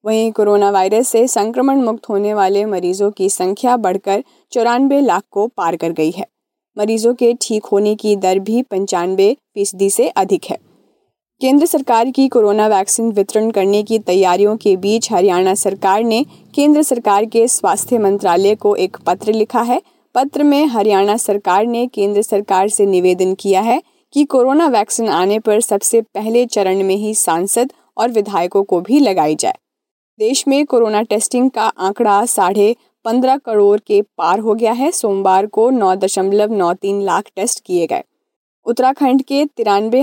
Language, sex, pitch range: Hindi, female, 195-245 Hz